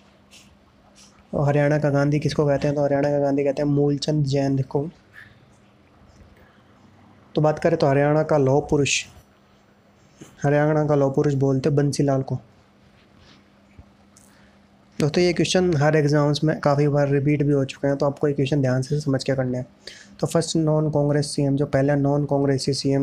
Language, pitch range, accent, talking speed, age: Hindi, 135-150 Hz, native, 175 wpm, 20-39